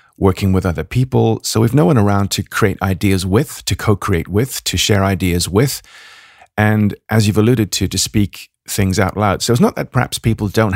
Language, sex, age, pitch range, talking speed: English, male, 40-59, 95-110 Hz, 205 wpm